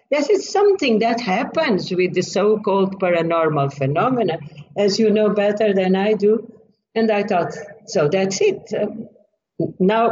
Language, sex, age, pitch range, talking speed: English, female, 60-79, 185-260 Hz, 140 wpm